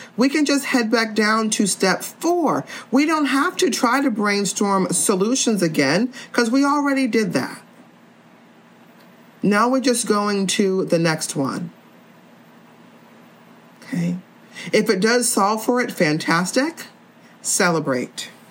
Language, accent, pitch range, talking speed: English, American, 180-240 Hz, 130 wpm